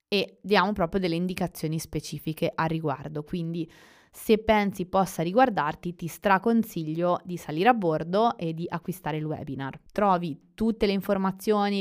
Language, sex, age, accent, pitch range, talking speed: Italian, female, 20-39, native, 170-210 Hz, 140 wpm